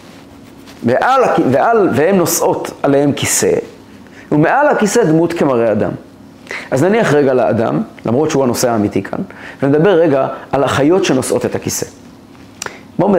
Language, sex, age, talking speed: Hebrew, male, 30-49, 120 wpm